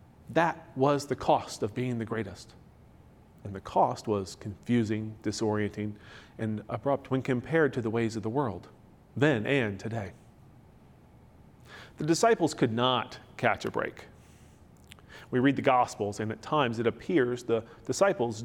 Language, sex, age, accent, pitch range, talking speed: English, male, 40-59, American, 110-165 Hz, 145 wpm